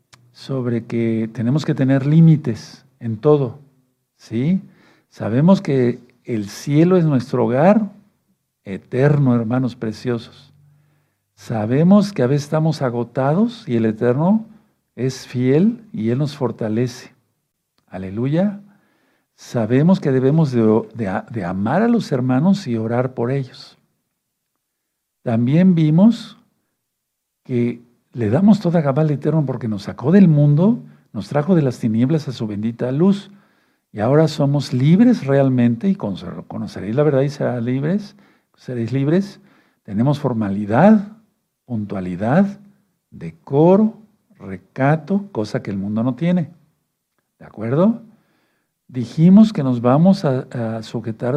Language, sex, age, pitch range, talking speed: Spanish, male, 50-69, 120-180 Hz, 120 wpm